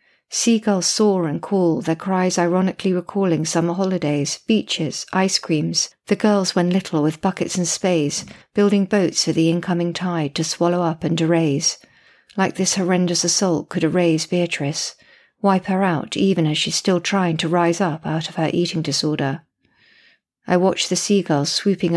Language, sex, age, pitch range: English, female, 50-69, 160-190 Hz